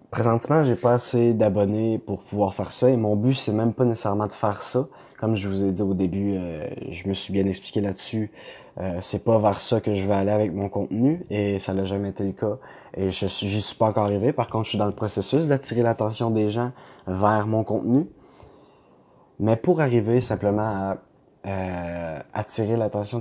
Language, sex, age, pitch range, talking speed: French, male, 20-39, 105-120 Hz, 210 wpm